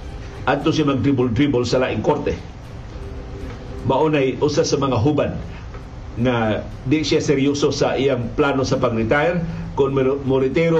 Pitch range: 120-145 Hz